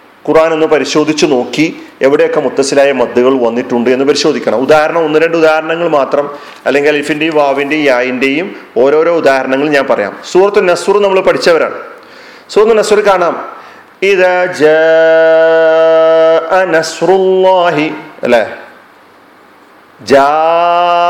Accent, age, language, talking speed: native, 40-59, Malayalam, 90 wpm